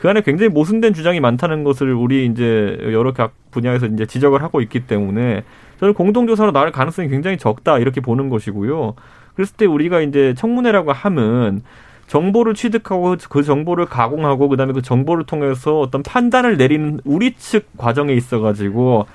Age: 30-49